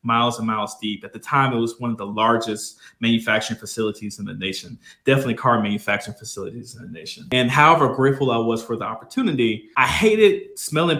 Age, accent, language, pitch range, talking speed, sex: 20-39, American, English, 115-140 Hz, 195 wpm, male